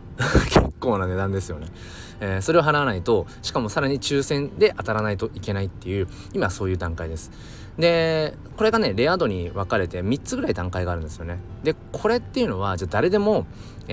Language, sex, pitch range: Japanese, male, 90-125 Hz